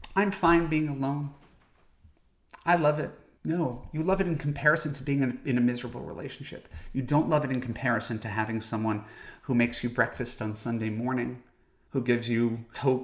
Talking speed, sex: 180 wpm, male